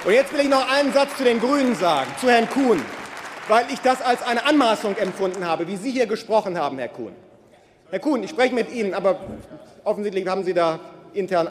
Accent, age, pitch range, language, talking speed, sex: German, 40-59, 200-270 Hz, German, 215 wpm, male